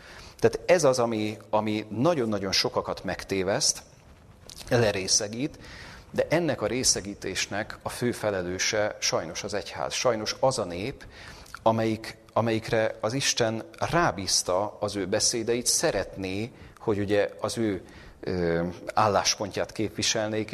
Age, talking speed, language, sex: 40-59, 110 wpm, Hungarian, male